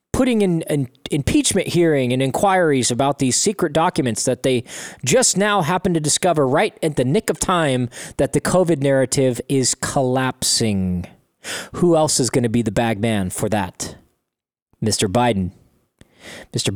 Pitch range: 120-170 Hz